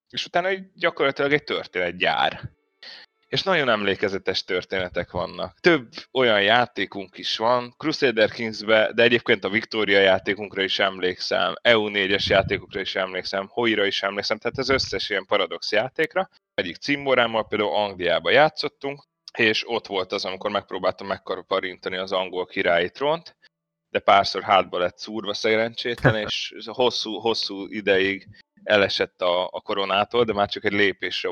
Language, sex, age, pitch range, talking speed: Hungarian, male, 30-49, 95-130 Hz, 140 wpm